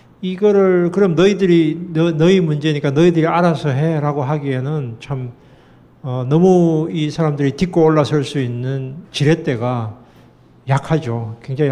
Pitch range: 145-175 Hz